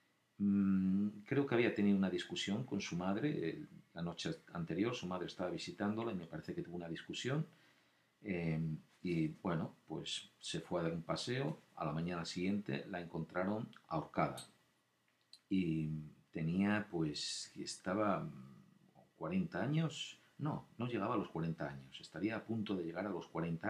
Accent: Spanish